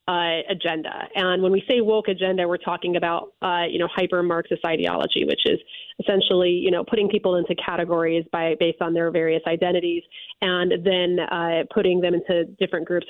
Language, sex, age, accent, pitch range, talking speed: English, female, 30-49, American, 170-200 Hz, 185 wpm